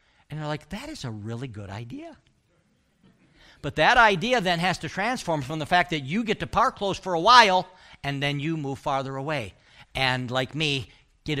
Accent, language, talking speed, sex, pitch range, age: American, English, 200 wpm, male, 130-185 Hz, 50-69